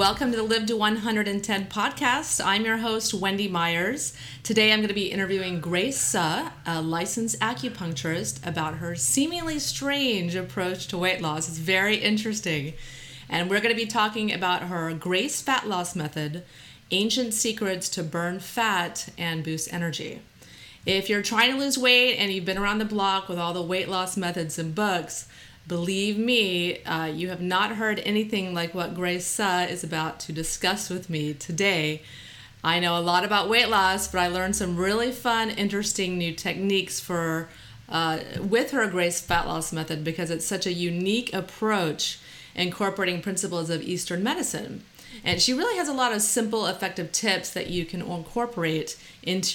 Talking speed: 175 wpm